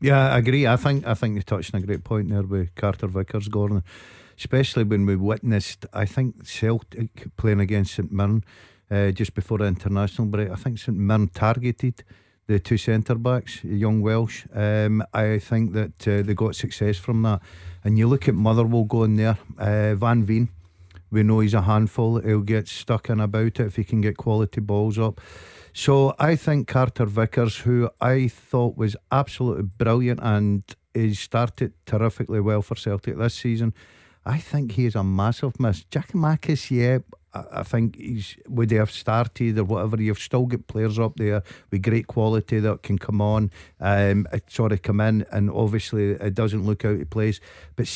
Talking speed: 185 wpm